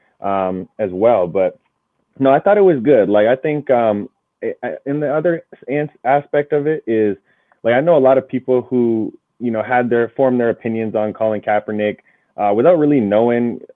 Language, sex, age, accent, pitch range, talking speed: English, male, 20-39, American, 95-120 Hz, 190 wpm